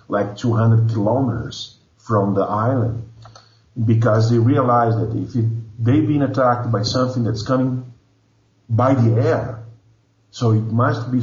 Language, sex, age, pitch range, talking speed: English, male, 50-69, 110-125 Hz, 140 wpm